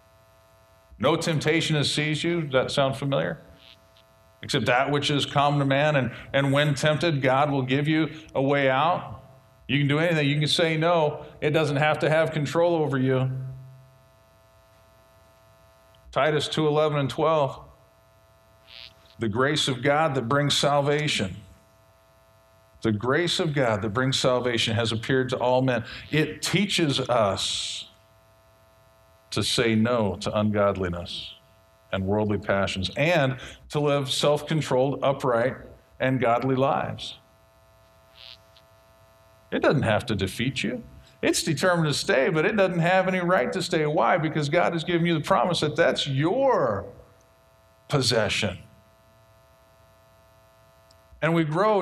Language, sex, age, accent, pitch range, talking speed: English, male, 50-69, American, 105-155 Hz, 135 wpm